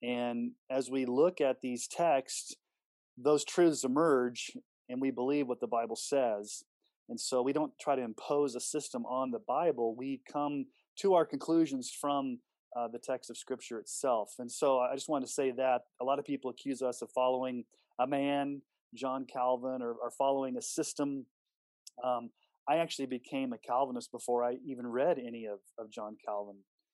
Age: 30-49